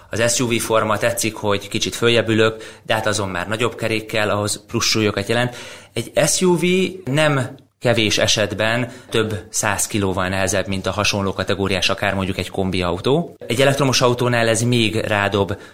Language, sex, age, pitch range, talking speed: Hungarian, male, 30-49, 95-115 Hz, 150 wpm